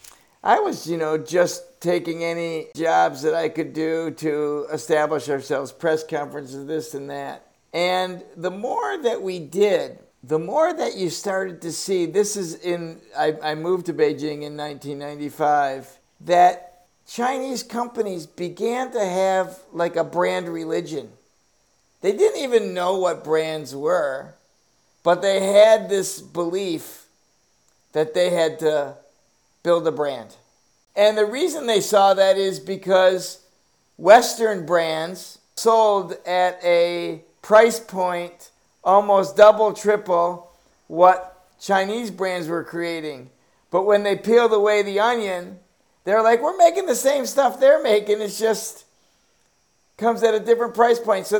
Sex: male